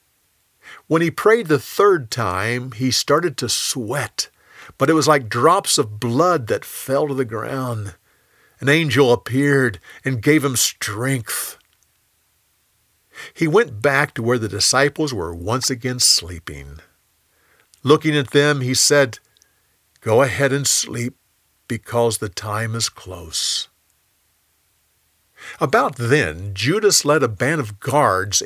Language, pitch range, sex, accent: English, 105-150 Hz, male, American